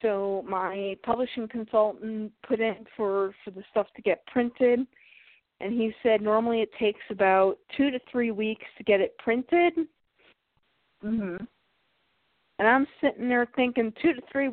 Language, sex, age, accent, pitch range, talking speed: English, female, 40-59, American, 210-265 Hz, 155 wpm